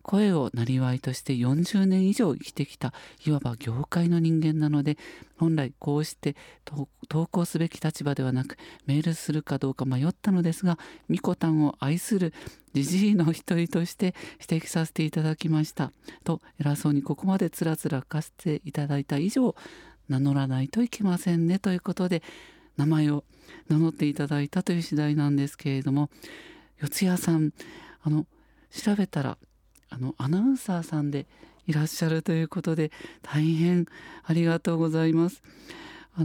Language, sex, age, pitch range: Japanese, male, 50-69, 145-175 Hz